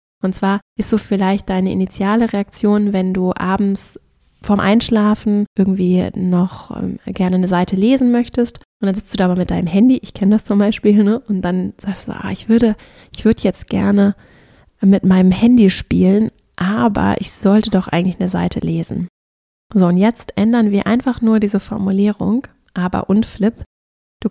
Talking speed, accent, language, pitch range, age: 175 wpm, German, German, 185-225 Hz, 20-39